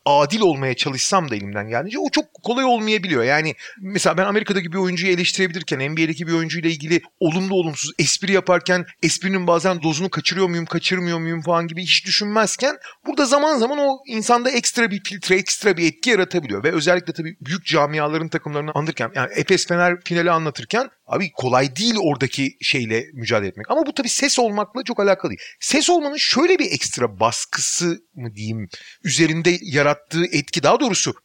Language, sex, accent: Turkish, male, native